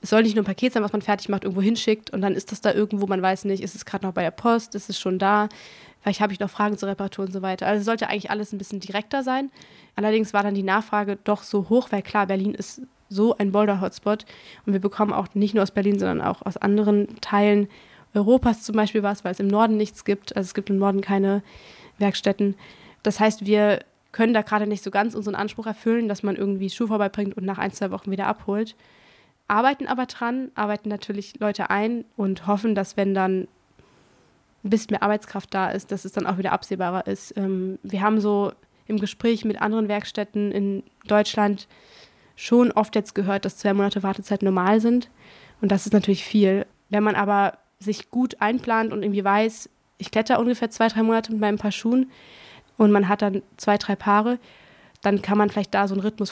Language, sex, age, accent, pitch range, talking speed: German, female, 20-39, German, 200-215 Hz, 220 wpm